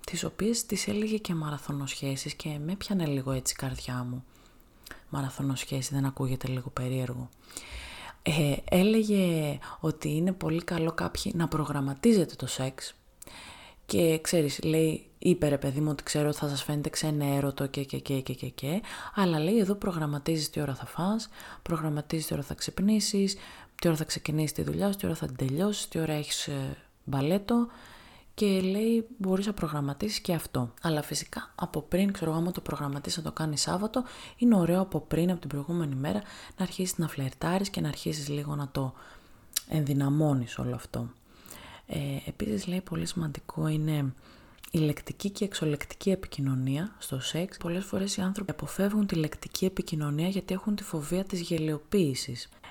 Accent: native